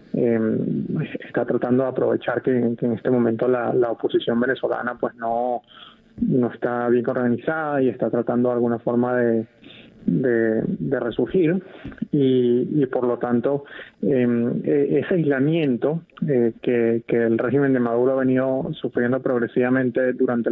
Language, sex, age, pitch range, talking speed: Spanish, male, 20-39, 120-140 Hz, 145 wpm